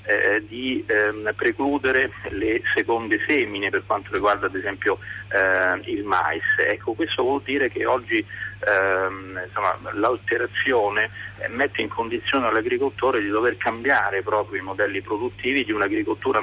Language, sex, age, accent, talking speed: Italian, male, 40-59, native, 130 wpm